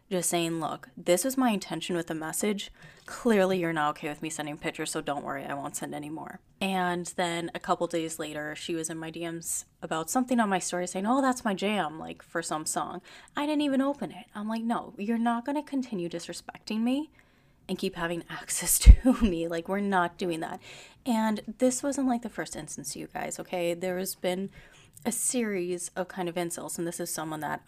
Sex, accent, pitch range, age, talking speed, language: female, American, 165-220 Hz, 20-39, 220 wpm, English